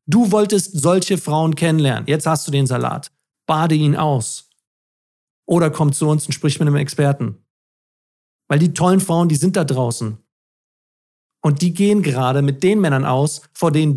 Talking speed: 170 wpm